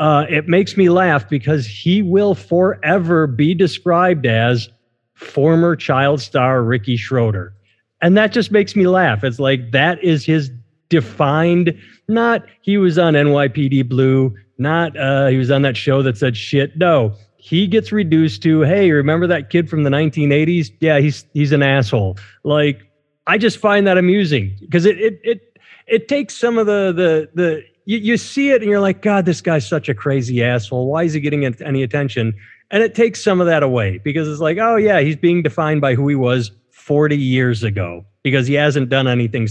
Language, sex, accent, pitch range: English, male, American, 125-175 Hz